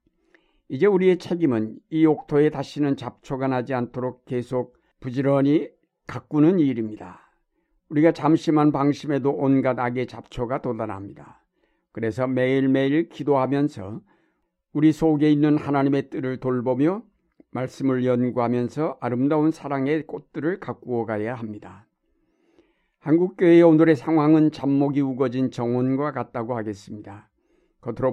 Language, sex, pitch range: Korean, male, 120-150 Hz